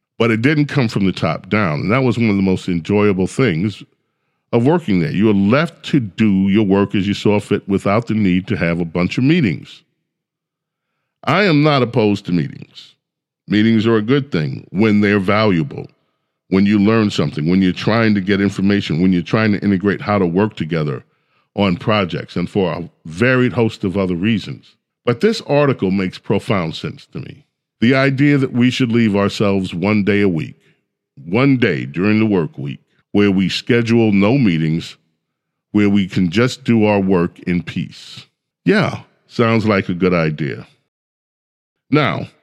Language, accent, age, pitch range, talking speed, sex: English, American, 50-69, 100-125 Hz, 180 wpm, male